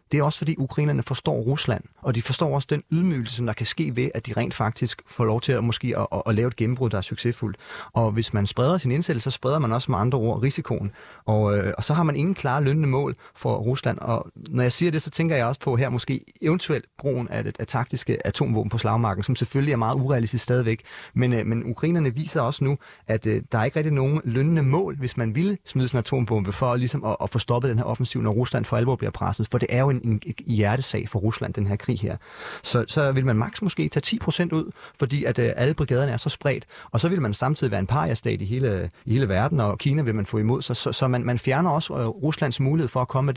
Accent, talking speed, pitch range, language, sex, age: native, 255 wpm, 115-140 Hz, Danish, male, 30-49